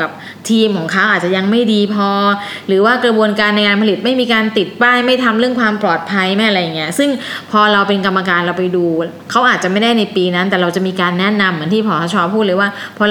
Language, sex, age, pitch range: Thai, female, 20-39, 185-225 Hz